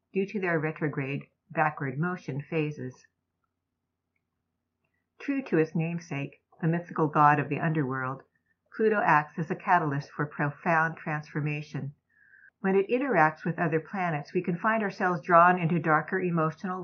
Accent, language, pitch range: American, English, 145-185 Hz